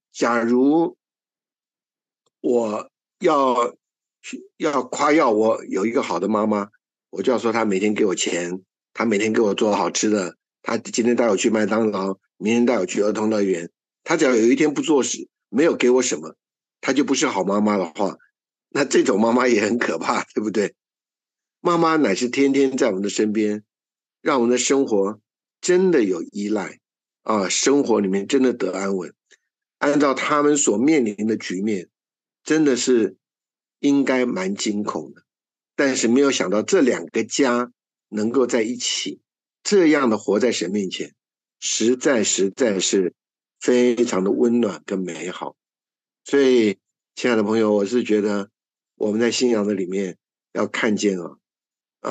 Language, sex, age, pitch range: Chinese, male, 60-79, 100-125 Hz